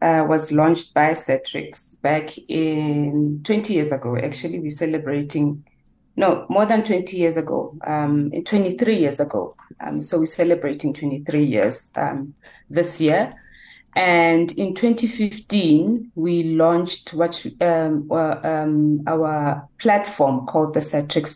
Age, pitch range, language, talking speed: 30-49, 150-175 Hz, English, 130 wpm